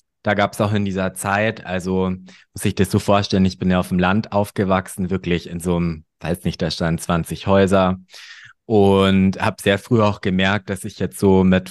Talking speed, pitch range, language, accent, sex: 210 wpm, 90-105 Hz, German, German, male